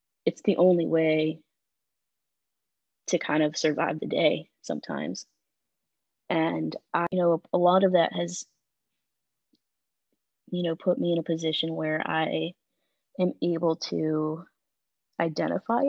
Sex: female